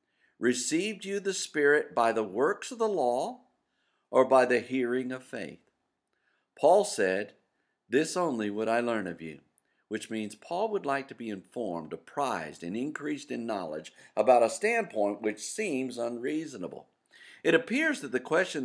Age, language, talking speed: 50-69, English, 160 wpm